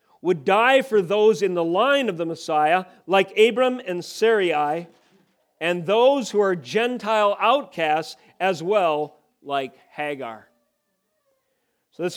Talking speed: 130 wpm